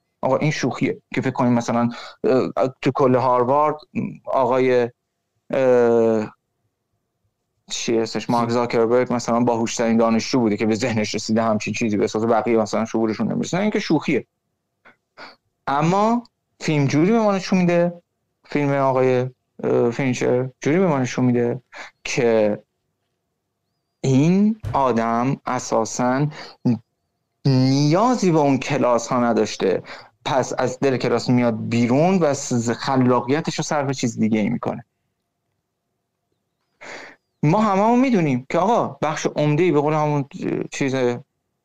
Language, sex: Persian, male